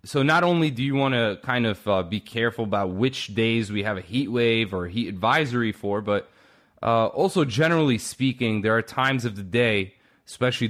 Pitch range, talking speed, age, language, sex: 100-130 Hz, 200 wpm, 20-39, English, male